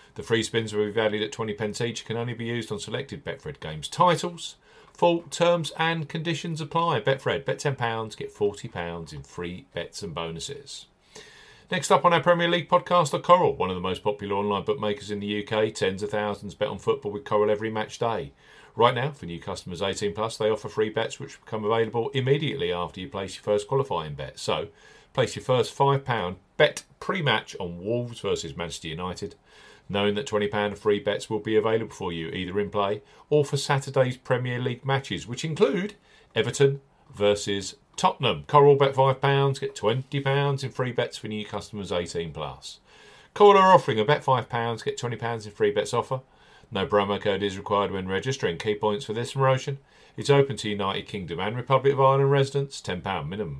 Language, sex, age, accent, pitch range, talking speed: English, male, 40-59, British, 105-140 Hz, 195 wpm